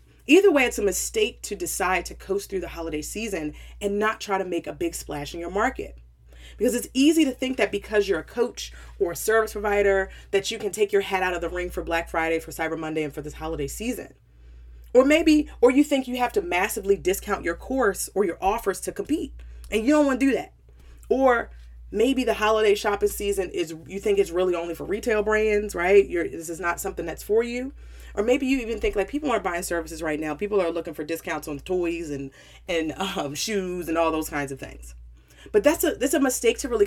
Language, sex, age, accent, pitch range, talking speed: English, female, 30-49, American, 155-225 Hz, 230 wpm